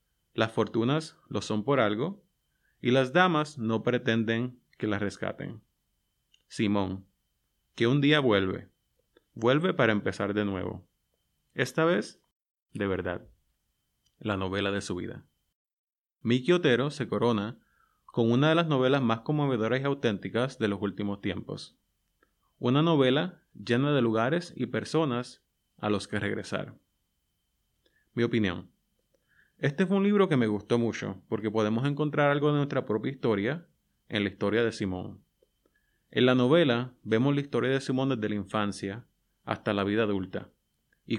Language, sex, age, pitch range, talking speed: English, male, 30-49, 105-140 Hz, 145 wpm